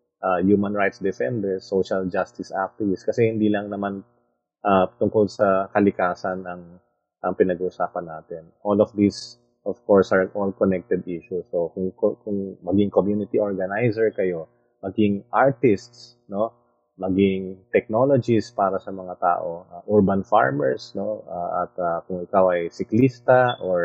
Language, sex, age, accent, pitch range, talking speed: Filipino, male, 20-39, native, 90-110 Hz, 140 wpm